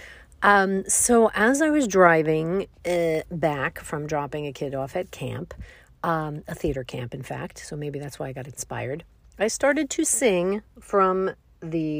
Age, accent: 40-59, American